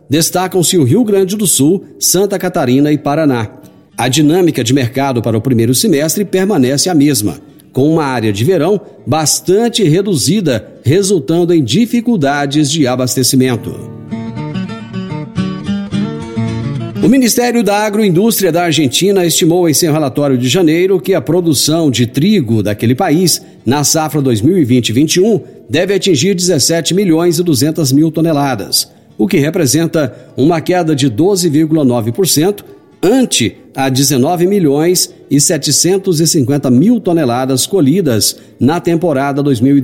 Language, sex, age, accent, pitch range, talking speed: Portuguese, male, 50-69, Brazilian, 130-180 Hz, 120 wpm